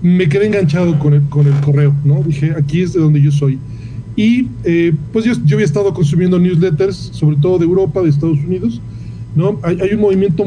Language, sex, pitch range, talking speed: Spanish, male, 140-175 Hz, 210 wpm